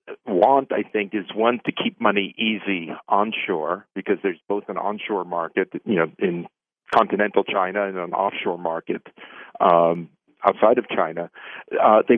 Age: 50-69